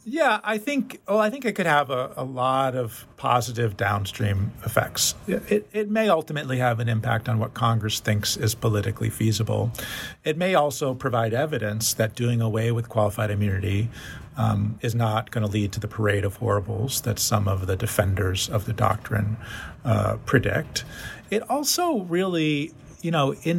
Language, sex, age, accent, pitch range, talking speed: English, male, 40-59, American, 110-140 Hz, 175 wpm